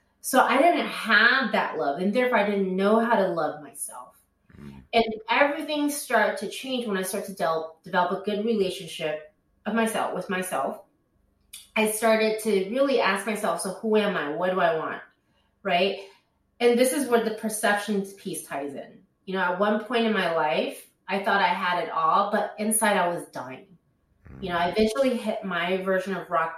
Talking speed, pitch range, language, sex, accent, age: 190 wpm, 165-210 Hz, English, female, American, 30-49